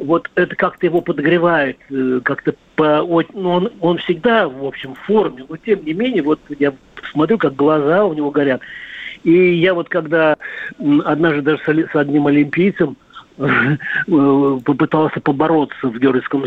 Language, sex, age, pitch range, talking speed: Russian, male, 50-69, 145-180 Hz, 145 wpm